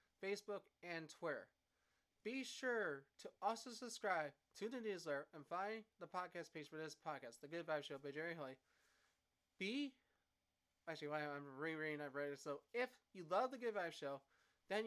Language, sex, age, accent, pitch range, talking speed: English, male, 30-49, American, 150-185 Hz, 170 wpm